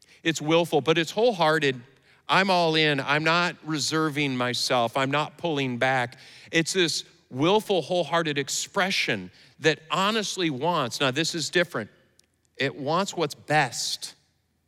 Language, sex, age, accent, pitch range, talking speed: English, male, 50-69, American, 110-160 Hz, 130 wpm